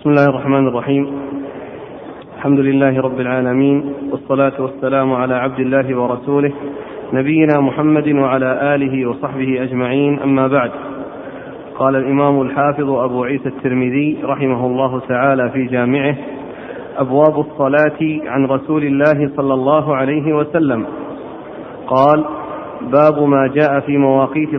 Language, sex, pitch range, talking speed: Arabic, male, 135-155 Hz, 115 wpm